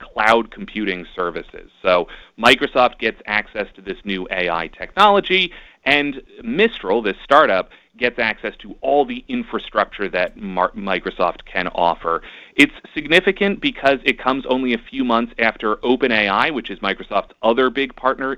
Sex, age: male, 30-49